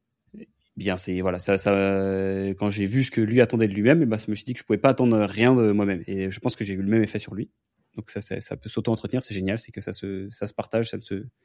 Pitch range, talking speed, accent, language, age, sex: 100-120 Hz, 300 wpm, French, French, 20-39, male